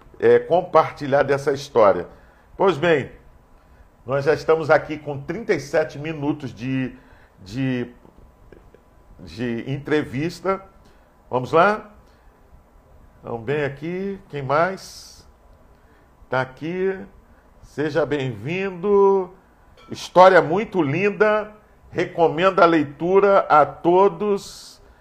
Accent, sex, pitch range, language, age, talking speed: Brazilian, male, 130-175 Hz, Portuguese, 50-69, 85 wpm